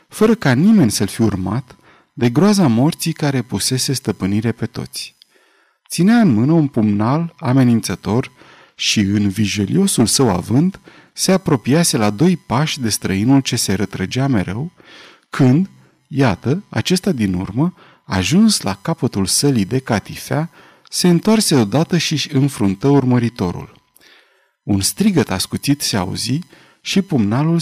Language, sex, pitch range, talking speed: Romanian, male, 105-160 Hz, 135 wpm